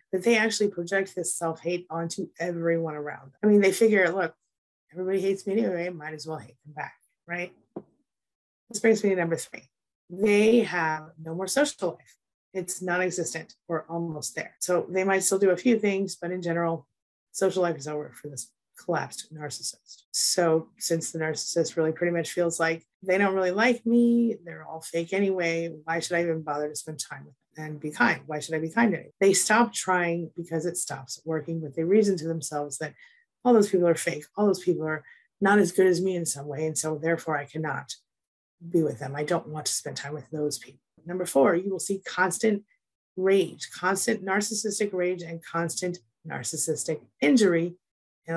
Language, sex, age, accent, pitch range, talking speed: English, female, 30-49, American, 155-190 Hz, 200 wpm